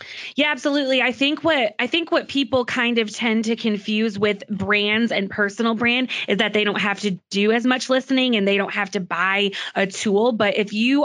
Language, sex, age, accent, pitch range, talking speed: English, female, 20-39, American, 200-230 Hz, 215 wpm